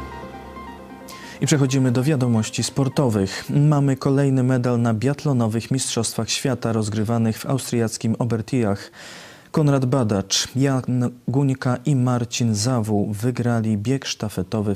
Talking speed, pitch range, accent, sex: 105 wpm, 105-125 Hz, native, male